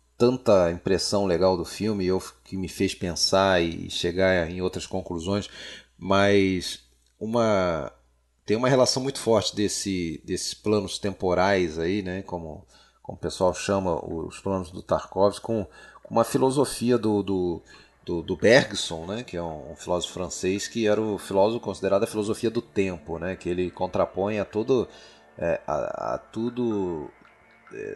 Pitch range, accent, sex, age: 85-110 Hz, Brazilian, male, 30-49